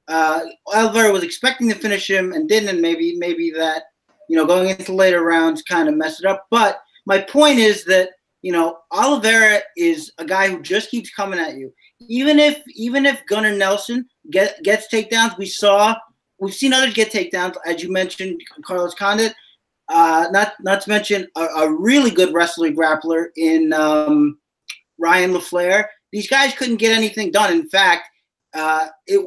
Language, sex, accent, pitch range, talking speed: English, male, American, 180-230 Hz, 180 wpm